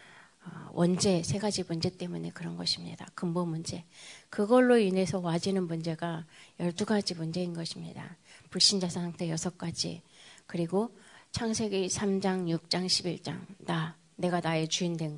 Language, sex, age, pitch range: Korean, female, 30-49, 170-205 Hz